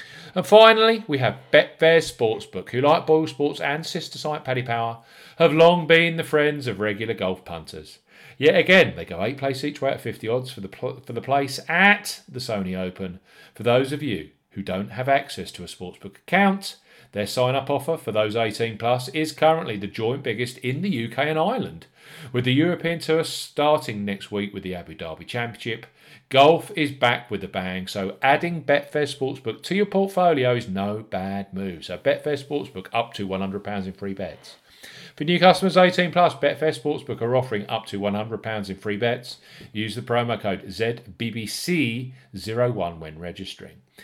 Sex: male